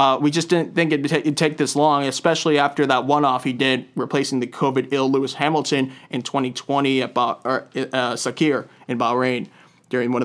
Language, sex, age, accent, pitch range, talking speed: English, male, 20-39, American, 140-175 Hz, 200 wpm